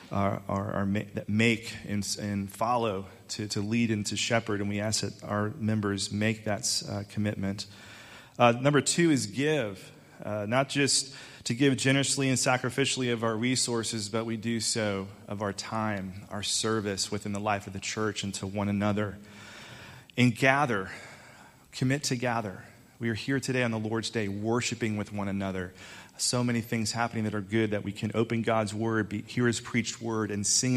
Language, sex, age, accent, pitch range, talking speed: English, male, 30-49, American, 105-125 Hz, 185 wpm